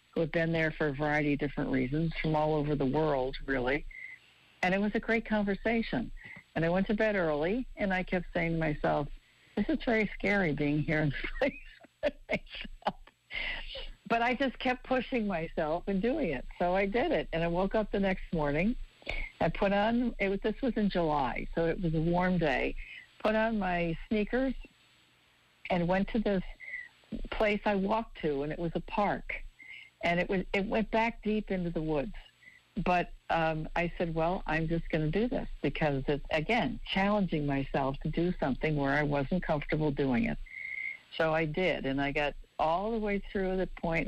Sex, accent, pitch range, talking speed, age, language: female, American, 155-215 Hz, 195 wpm, 60-79, English